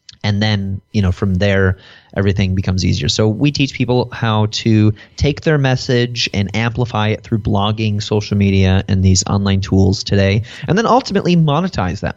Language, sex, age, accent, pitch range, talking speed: English, male, 30-49, American, 100-120 Hz, 175 wpm